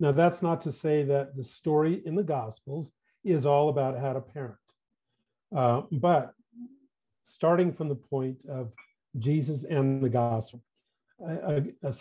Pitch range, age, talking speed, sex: 135-170 Hz, 50-69, 150 wpm, male